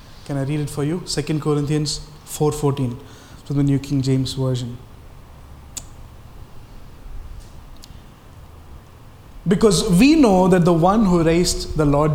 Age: 20-39